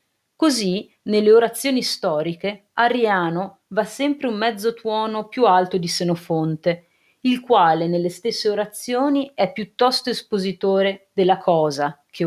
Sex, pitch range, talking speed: female, 185-235 Hz, 120 wpm